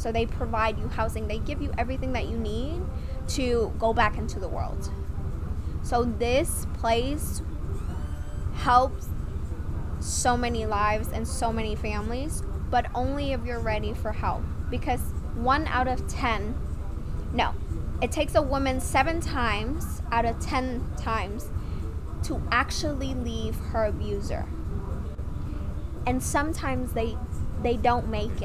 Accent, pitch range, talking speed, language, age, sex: American, 75-90 Hz, 135 wpm, English, 10-29, female